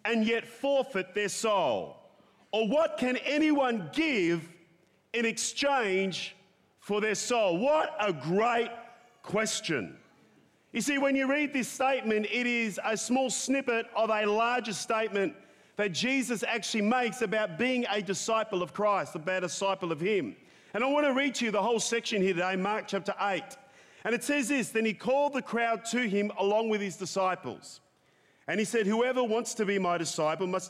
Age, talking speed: 40-59, 175 wpm